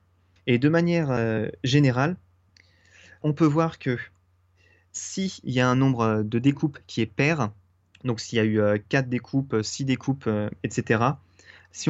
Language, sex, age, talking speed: French, male, 20-39, 160 wpm